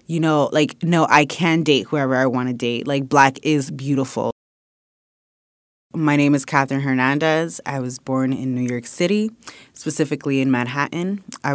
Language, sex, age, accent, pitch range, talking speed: English, female, 20-39, American, 130-160 Hz, 160 wpm